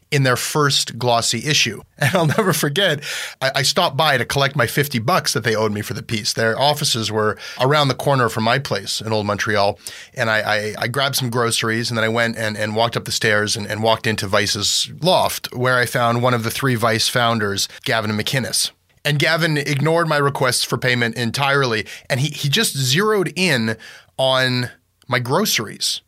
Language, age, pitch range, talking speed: English, 30-49, 110-140 Hz, 200 wpm